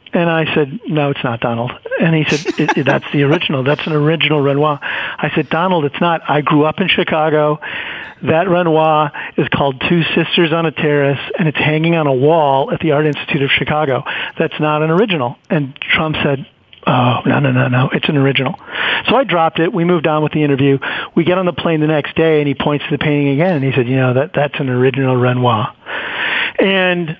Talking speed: 225 wpm